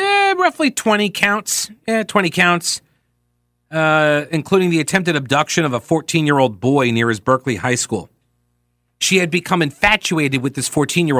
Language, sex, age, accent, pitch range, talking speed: English, male, 40-59, American, 140-195 Hz, 160 wpm